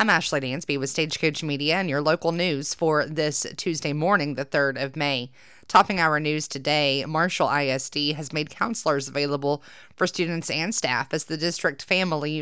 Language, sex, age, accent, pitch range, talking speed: English, female, 30-49, American, 140-165 Hz, 175 wpm